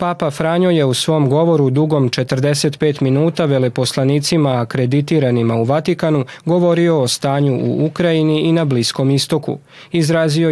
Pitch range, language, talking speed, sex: 130-155 Hz, Croatian, 130 wpm, male